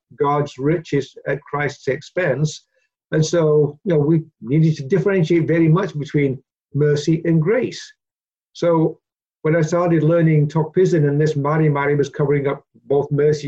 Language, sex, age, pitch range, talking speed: English, male, 50-69, 140-165 Hz, 150 wpm